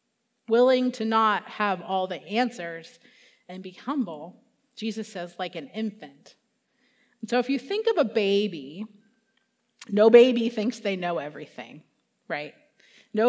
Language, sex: English, female